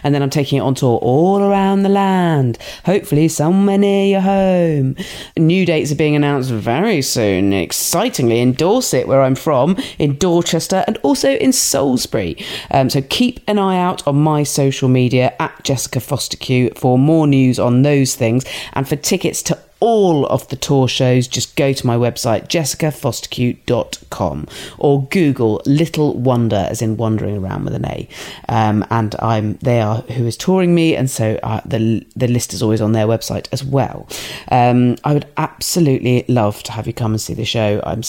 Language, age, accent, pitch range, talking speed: English, 40-59, British, 120-170 Hz, 185 wpm